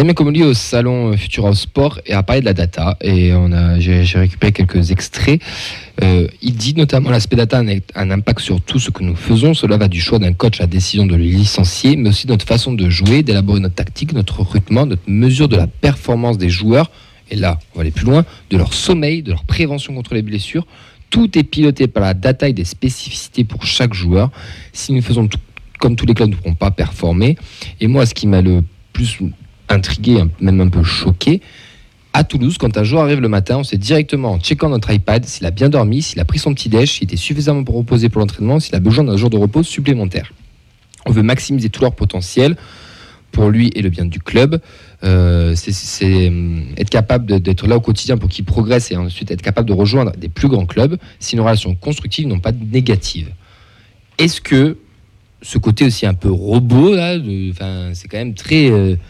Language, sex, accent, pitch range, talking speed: French, male, French, 95-130 Hz, 220 wpm